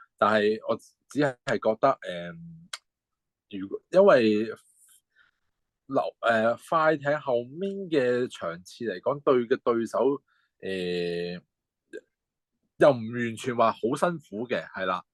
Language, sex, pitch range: Chinese, male, 100-155 Hz